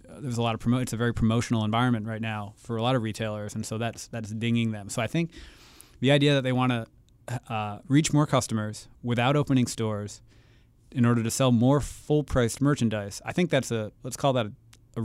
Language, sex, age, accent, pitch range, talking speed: English, male, 30-49, American, 115-135 Hz, 220 wpm